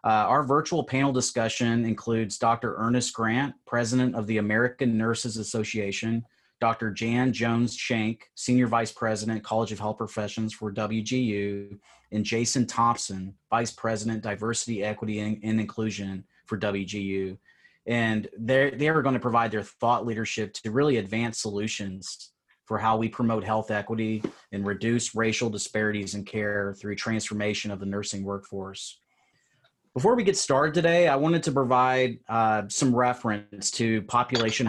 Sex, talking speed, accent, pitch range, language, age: male, 145 wpm, American, 110-125 Hz, English, 30-49